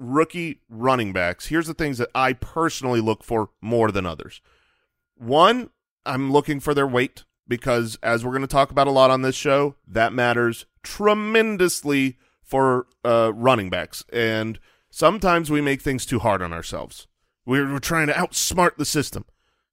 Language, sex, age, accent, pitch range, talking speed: English, male, 30-49, American, 115-160 Hz, 165 wpm